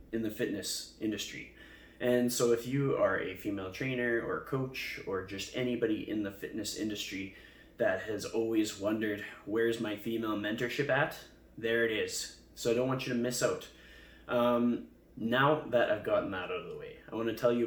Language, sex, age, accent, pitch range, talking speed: English, male, 20-39, American, 110-130 Hz, 190 wpm